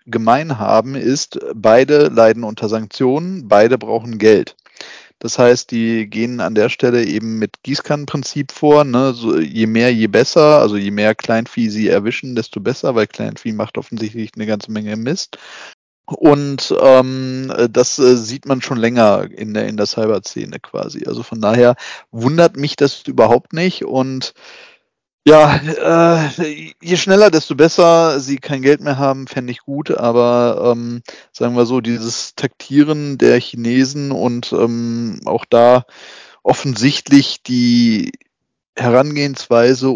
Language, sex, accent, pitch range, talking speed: German, male, German, 115-145 Hz, 140 wpm